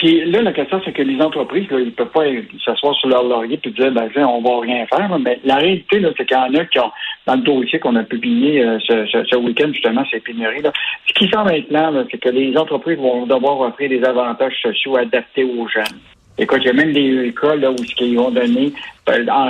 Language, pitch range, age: French, 130-175 Hz, 60-79